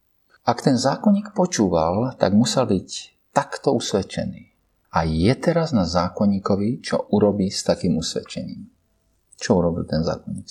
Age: 50-69